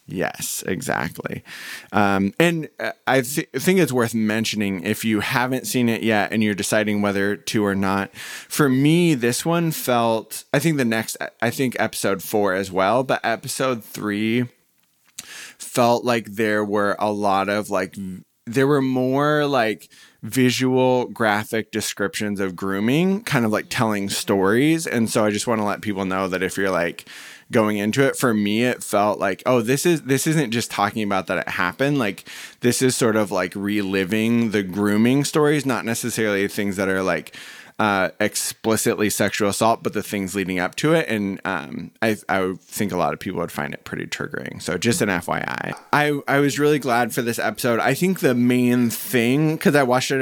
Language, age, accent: English, 20-39, American